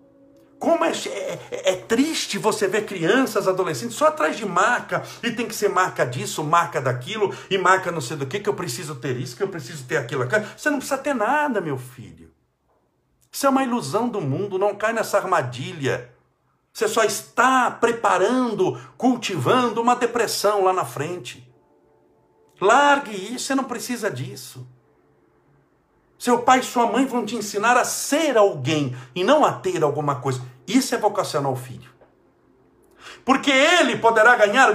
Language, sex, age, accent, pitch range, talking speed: Portuguese, male, 60-79, Brazilian, 130-220 Hz, 165 wpm